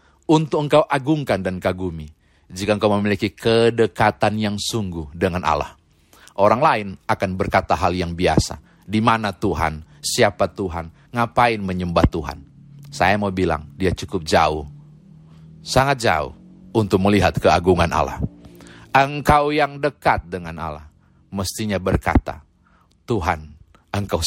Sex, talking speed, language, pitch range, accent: male, 120 wpm, Indonesian, 80-110 Hz, native